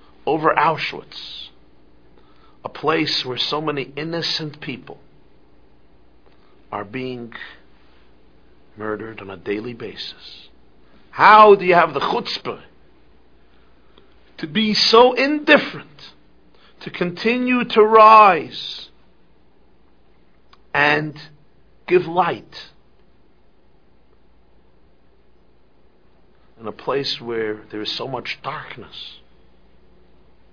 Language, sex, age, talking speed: English, male, 50-69, 85 wpm